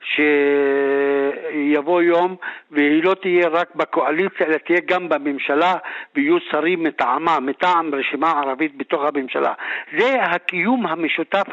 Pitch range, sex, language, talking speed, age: 175-230 Hz, male, Hebrew, 115 wpm, 60-79